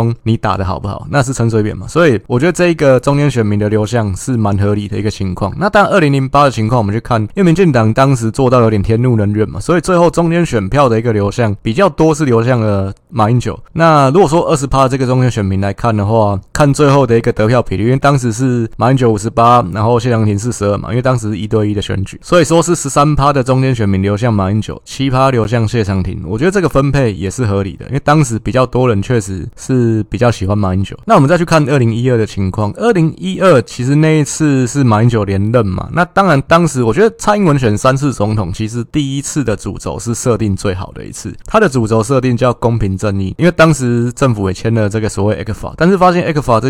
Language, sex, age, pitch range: Chinese, male, 20-39, 105-140 Hz